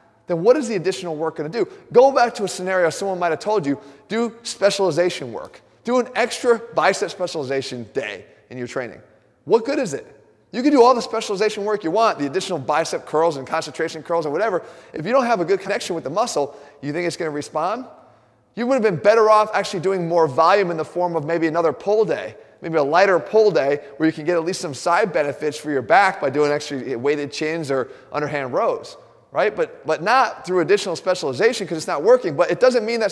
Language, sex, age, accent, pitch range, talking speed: English, male, 30-49, American, 150-215 Hz, 230 wpm